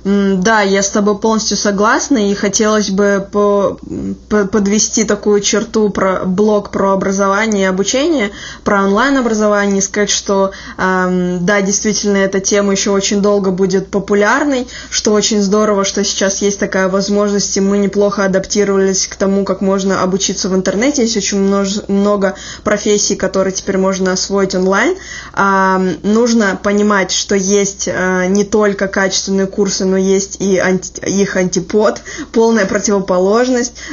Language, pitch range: Russian, 195-215 Hz